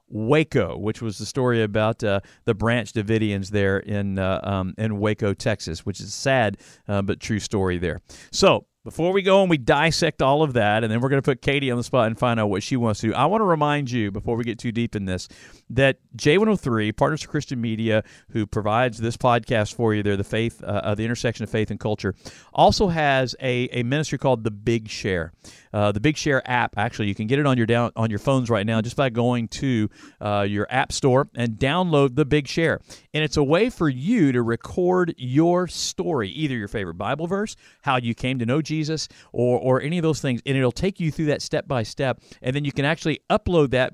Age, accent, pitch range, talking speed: 50-69, American, 110-140 Hz, 230 wpm